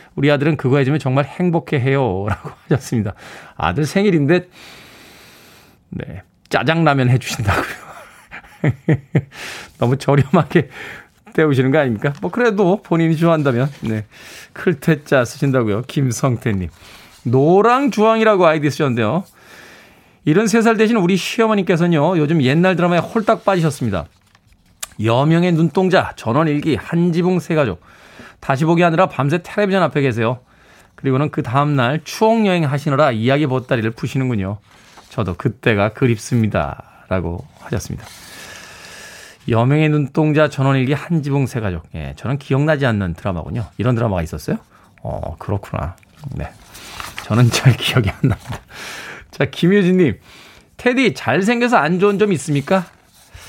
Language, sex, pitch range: Korean, male, 115-170 Hz